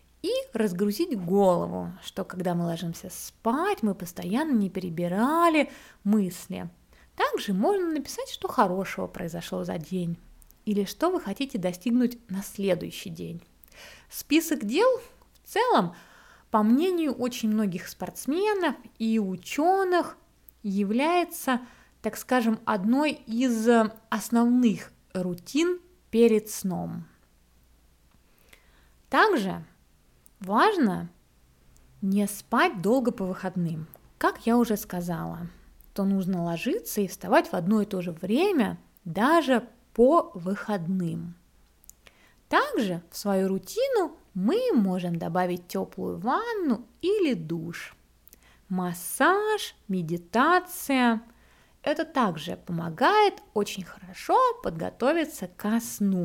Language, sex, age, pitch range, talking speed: Russian, female, 20-39, 175-270 Hz, 100 wpm